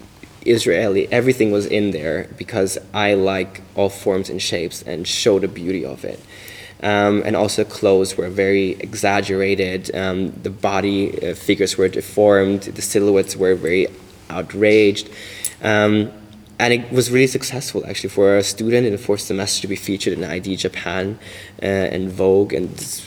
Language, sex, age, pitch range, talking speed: English, male, 20-39, 95-105 Hz, 160 wpm